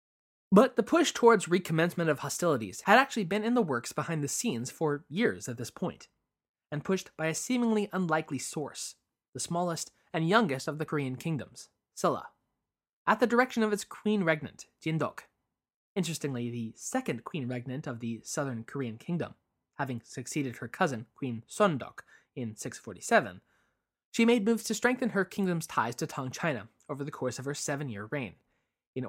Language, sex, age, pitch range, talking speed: English, male, 20-39, 130-185 Hz, 170 wpm